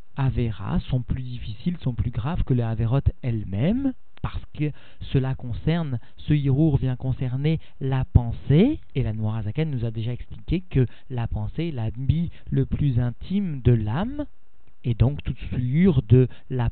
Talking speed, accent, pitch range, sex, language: 160 wpm, French, 115-145 Hz, male, French